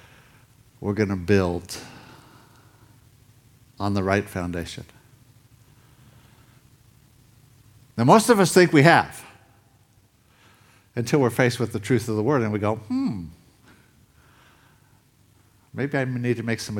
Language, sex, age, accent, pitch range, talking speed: English, male, 60-79, American, 105-130 Hz, 120 wpm